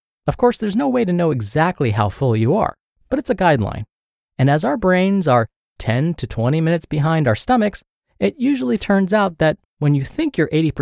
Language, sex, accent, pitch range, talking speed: English, male, American, 115-180 Hz, 205 wpm